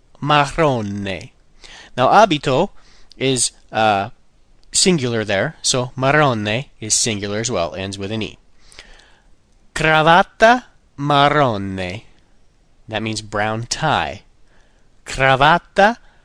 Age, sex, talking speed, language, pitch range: 30-49, male, 90 wpm, English, 110-155 Hz